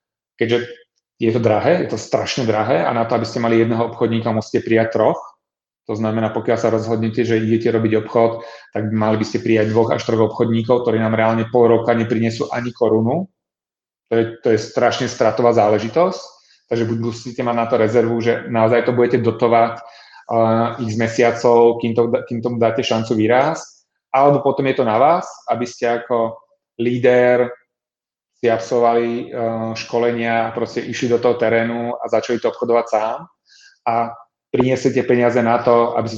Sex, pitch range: male, 115-120 Hz